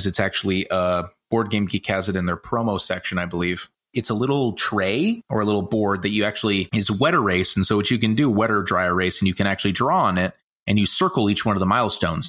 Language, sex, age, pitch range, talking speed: English, male, 30-49, 95-110 Hz, 265 wpm